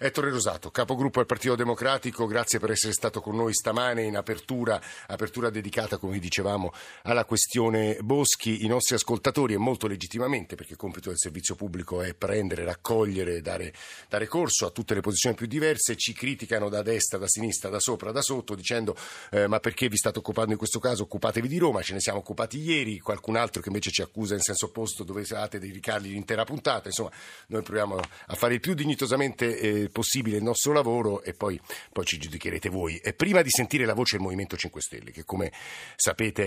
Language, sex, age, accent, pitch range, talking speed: Italian, male, 50-69, native, 100-120 Hz, 200 wpm